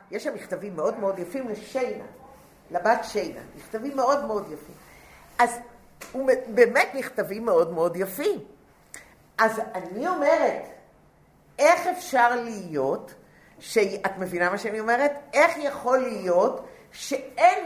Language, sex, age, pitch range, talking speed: English, female, 50-69, 195-295 Hz, 110 wpm